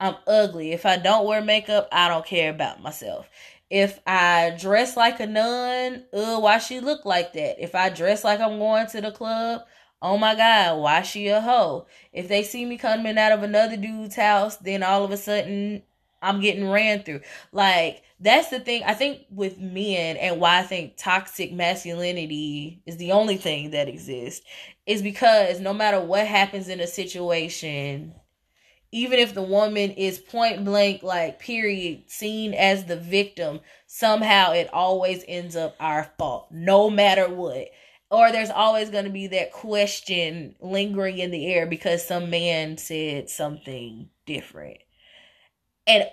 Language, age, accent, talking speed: English, 20-39, American, 170 wpm